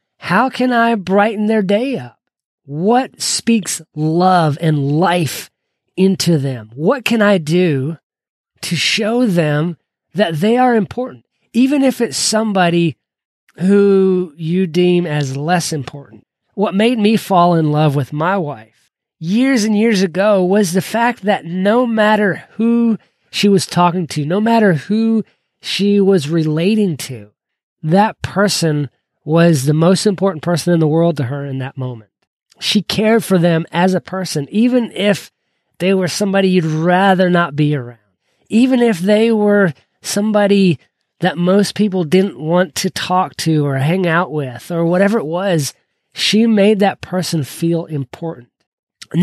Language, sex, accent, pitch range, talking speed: English, male, American, 160-210 Hz, 155 wpm